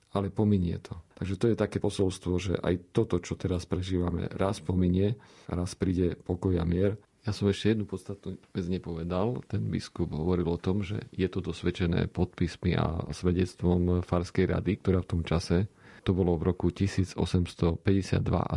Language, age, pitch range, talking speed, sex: Slovak, 40-59, 85-95 Hz, 160 wpm, male